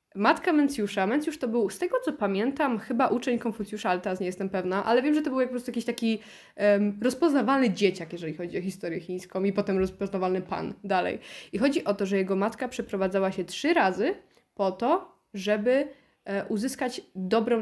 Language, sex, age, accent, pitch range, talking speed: Polish, female, 20-39, native, 190-225 Hz, 195 wpm